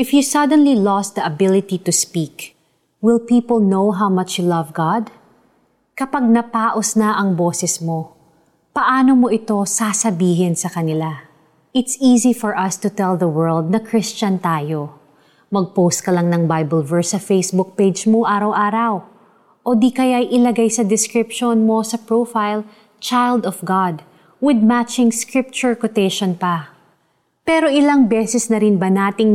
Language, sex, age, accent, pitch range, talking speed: Filipino, female, 20-39, native, 190-235 Hz, 150 wpm